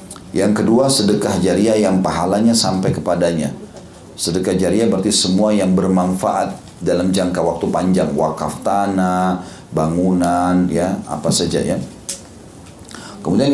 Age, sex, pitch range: 40-59, male, 90-105 Hz